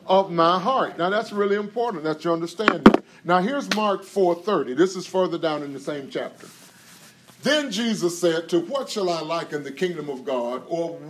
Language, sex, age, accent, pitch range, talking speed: English, male, 40-59, American, 150-205 Hz, 190 wpm